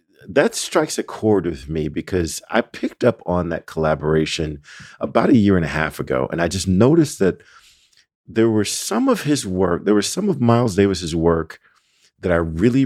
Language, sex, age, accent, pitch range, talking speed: English, male, 50-69, American, 85-110 Hz, 190 wpm